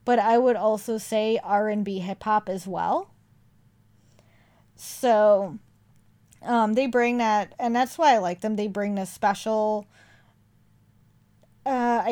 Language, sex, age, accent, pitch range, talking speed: English, female, 20-39, American, 180-240 Hz, 125 wpm